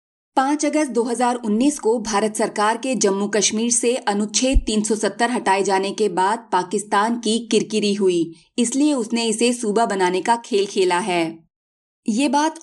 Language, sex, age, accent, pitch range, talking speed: Hindi, female, 20-39, native, 195-245 Hz, 145 wpm